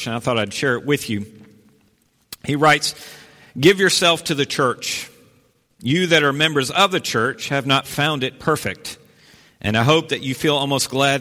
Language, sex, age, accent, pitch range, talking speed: English, male, 50-69, American, 115-145 Hz, 185 wpm